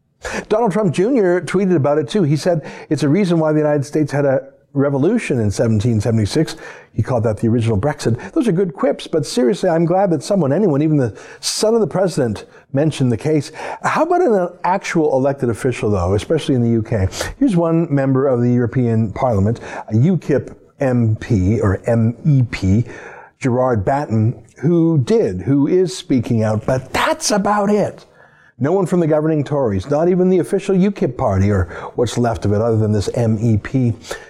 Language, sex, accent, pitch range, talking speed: English, male, American, 120-180 Hz, 180 wpm